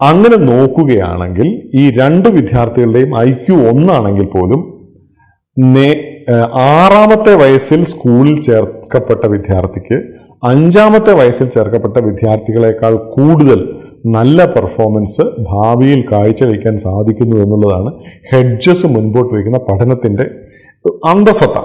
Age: 40-59